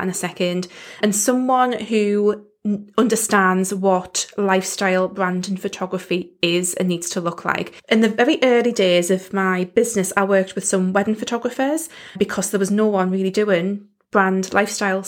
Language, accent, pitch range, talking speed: English, British, 190-220 Hz, 165 wpm